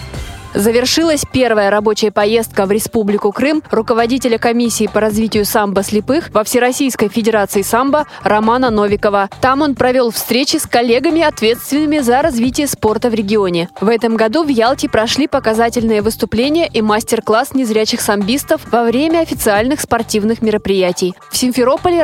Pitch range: 215-265 Hz